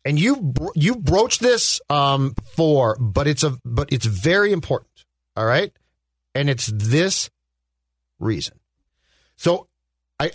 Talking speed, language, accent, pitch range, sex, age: 130 wpm, English, American, 120-175 Hz, male, 40-59